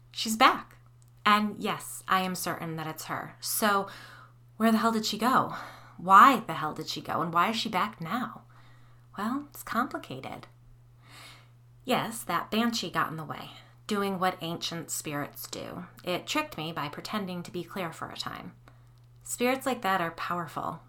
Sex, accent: female, American